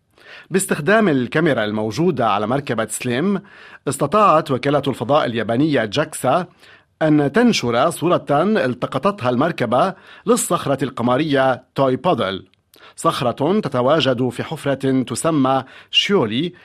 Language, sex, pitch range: Arabic, male, 125-165 Hz